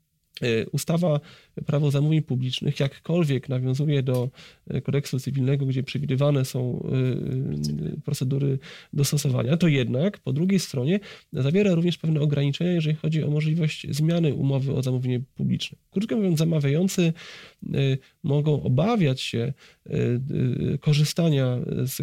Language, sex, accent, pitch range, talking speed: Polish, male, native, 135-160 Hz, 110 wpm